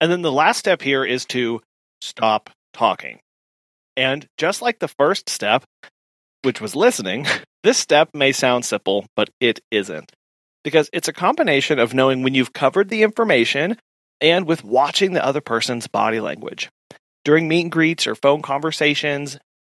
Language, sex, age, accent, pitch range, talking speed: English, male, 30-49, American, 120-155 Hz, 160 wpm